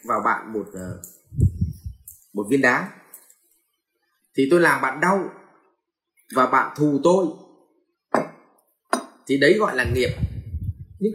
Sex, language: male, Vietnamese